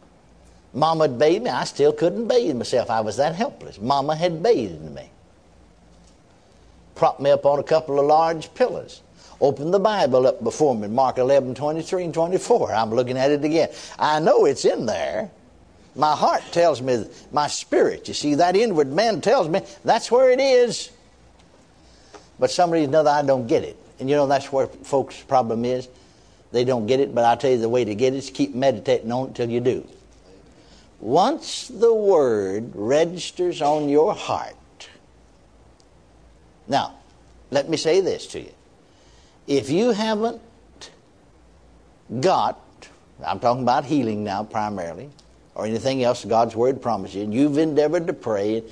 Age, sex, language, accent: 60-79, male, English, American